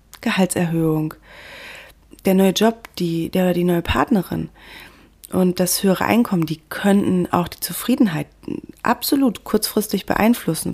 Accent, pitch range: German, 175-215 Hz